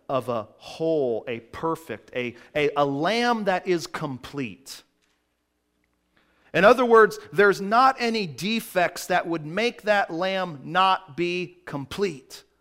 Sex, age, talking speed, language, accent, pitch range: male, 40-59, 130 wpm, English, American, 125-190 Hz